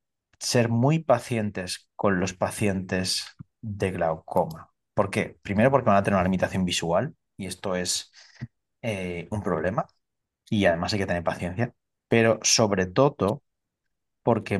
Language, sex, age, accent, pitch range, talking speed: Spanish, male, 30-49, Spanish, 95-115 Hz, 140 wpm